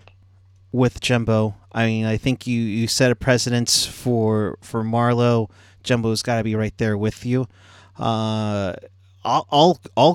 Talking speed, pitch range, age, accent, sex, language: 155 wpm, 100-130 Hz, 30-49, American, male, English